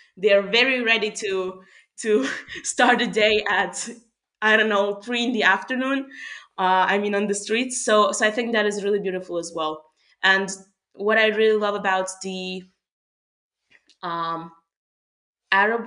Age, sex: 20-39, female